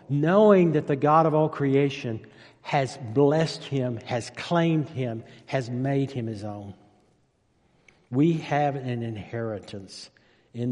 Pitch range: 120-150 Hz